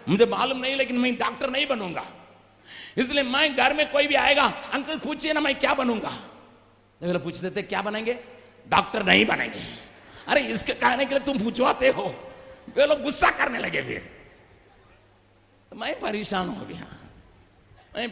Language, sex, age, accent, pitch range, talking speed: Hindi, male, 50-69, native, 195-270 Hz, 155 wpm